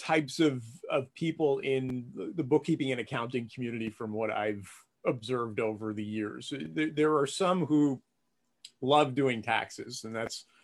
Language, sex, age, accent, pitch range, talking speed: English, male, 30-49, American, 110-150 Hz, 150 wpm